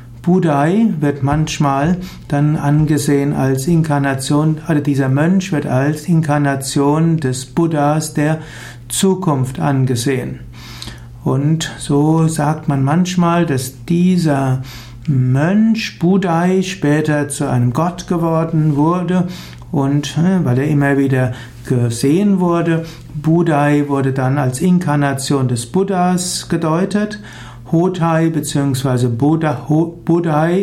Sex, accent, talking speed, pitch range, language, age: male, German, 100 wpm, 135-170 Hz, German, 60-79